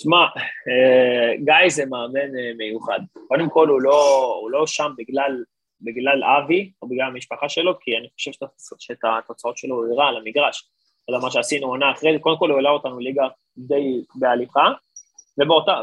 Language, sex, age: Hebrew, male, 20-39